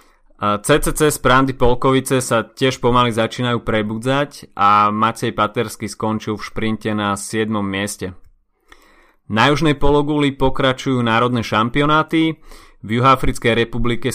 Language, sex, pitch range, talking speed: Slovak, male, 110-125 Hz, 110 wpm